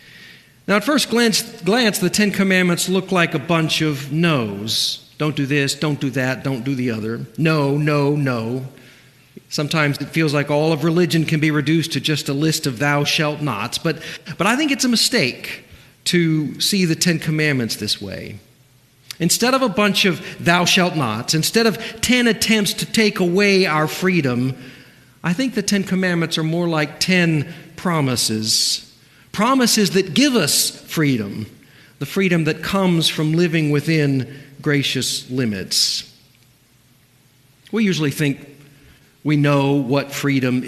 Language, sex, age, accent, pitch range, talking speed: English, male, 50-69, American, 135-175 Hz, 160 wpm